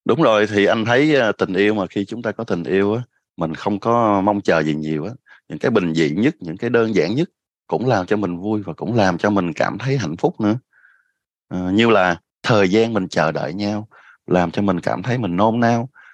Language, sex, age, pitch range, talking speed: Vietnamese, male, 20-39, 90-115 Hz, 240 wpm